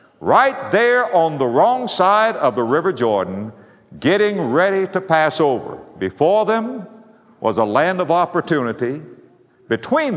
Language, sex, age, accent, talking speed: English, male, 60-79, American, 135 wpm